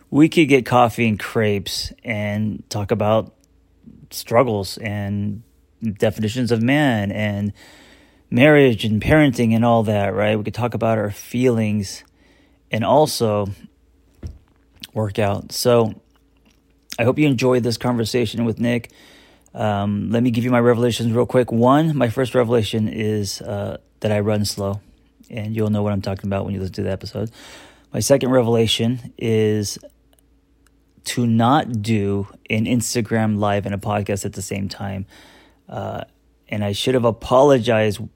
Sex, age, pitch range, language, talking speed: male, 30-49, 105-120 Hz, English, 150 wpm